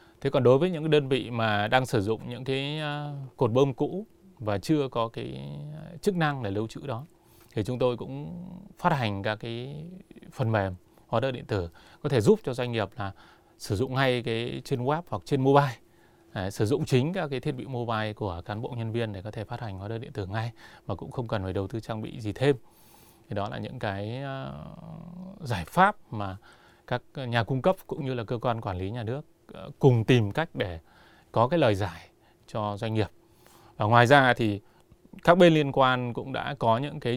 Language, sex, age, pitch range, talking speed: Vietnamese, male, 20-39, 105-140 Hz, 220 wpm